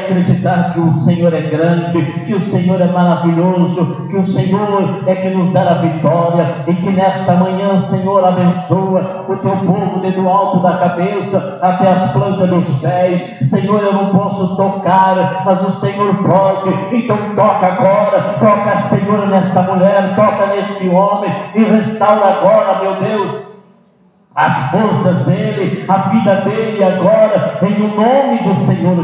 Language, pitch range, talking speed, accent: Portuguese, 175-205 Hz, 155 wpm, Brazilian